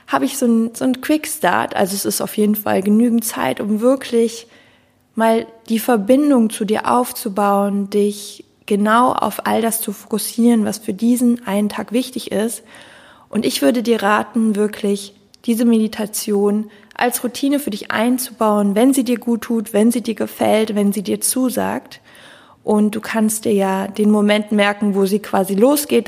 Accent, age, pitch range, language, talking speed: German, 20-39, 205-240 Hz, German, 175 wpm